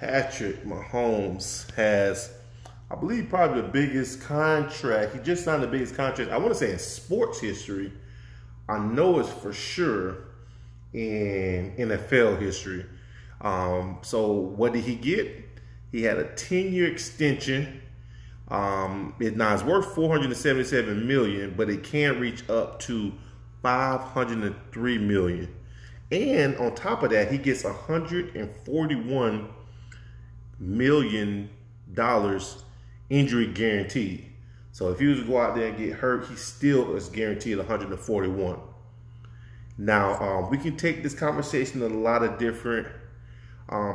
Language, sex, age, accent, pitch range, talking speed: English, male, 30-49, American, 100-125 Hz, 130 wpm